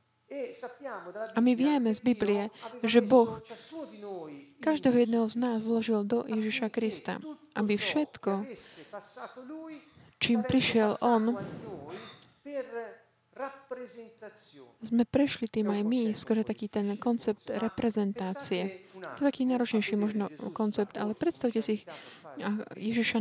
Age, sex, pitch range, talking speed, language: 40-59, female, 210-245 Hz, 105 wpm, Slovak